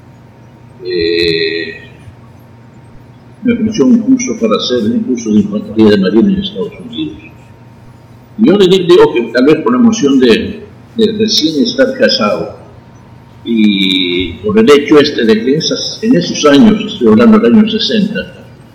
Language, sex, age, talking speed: Spanish, male, 60-79, 155 wpm